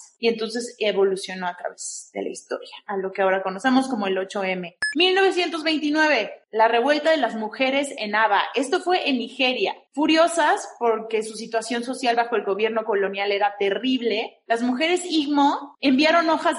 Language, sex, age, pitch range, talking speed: Spanish, female, 30-49, 220-270 Hz, 160 wpm